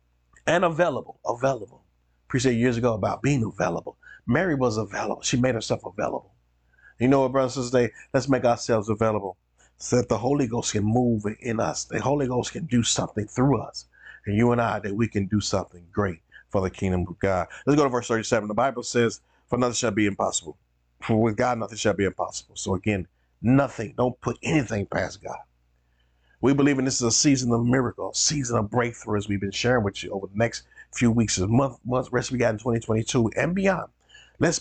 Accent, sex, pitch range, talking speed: American, male, 100-125 Hz, 210 wpm